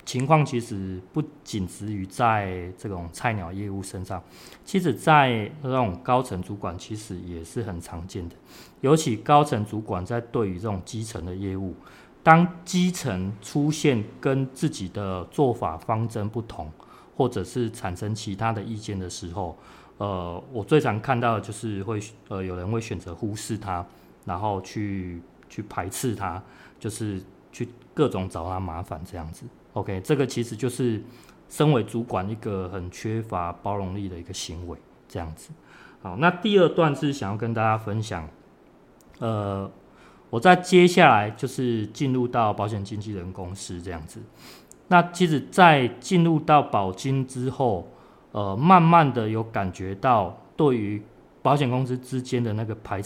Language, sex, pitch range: Chinese, male, 95-130 Hz